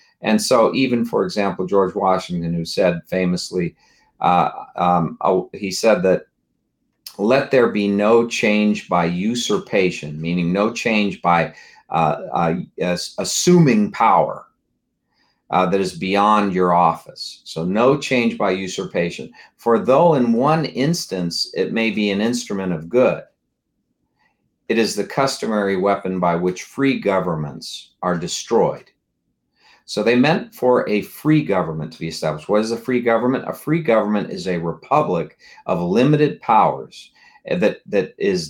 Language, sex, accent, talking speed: English, male, American, 145 wpm